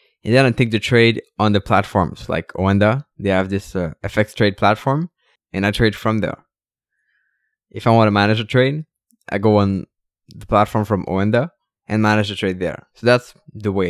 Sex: male